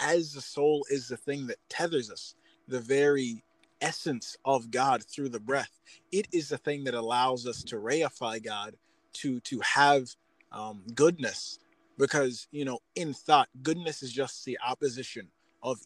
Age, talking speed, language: 20-39, 165 wpm, English